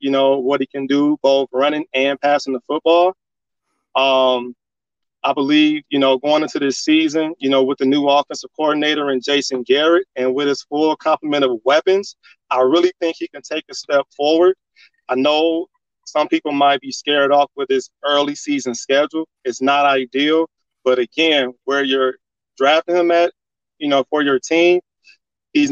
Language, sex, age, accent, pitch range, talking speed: English, male, 30-49, American, 130-160 Hz, 175 wpm